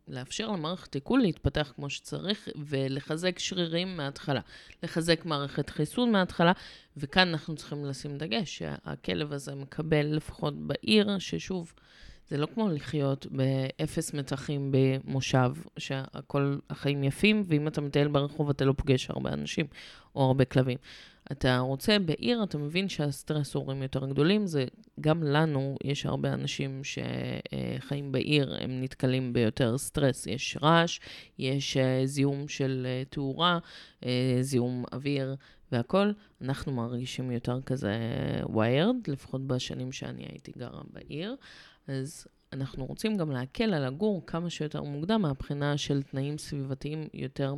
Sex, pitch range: female, 130-160 Hz